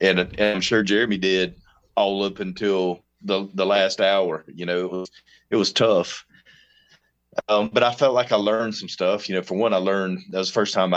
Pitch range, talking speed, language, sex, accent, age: 80-95 Hz, 220 wpm, English, male, American, 30-49